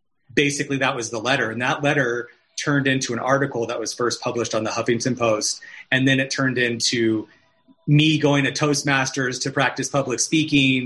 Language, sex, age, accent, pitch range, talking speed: English, male, 30-49, American, 115-140 Hz, 180 wpm